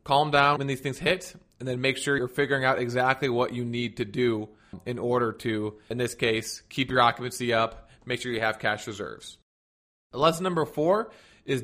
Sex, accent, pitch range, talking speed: male, American, 115-140 Hz, 200 wpm